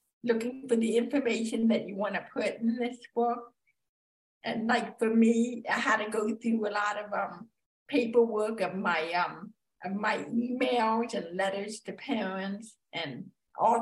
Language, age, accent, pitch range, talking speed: English, 50-69, American, 210-240 Hz, 165 wpm